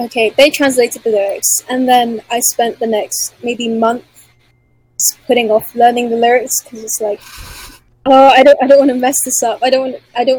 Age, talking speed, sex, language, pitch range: 10-29, 210 wpm, female, English, 210-255 Hz